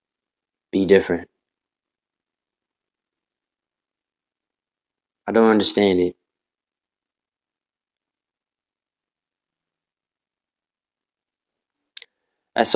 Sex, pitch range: male, 90-105 Hz